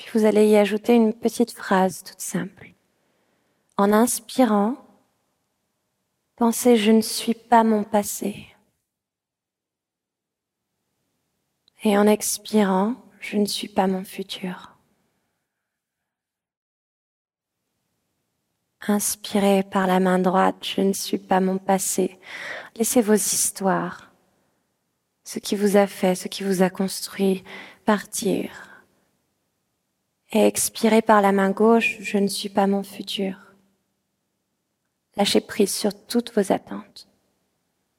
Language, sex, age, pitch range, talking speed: French, female, 20-39, 190-210 Hz, 120 wpm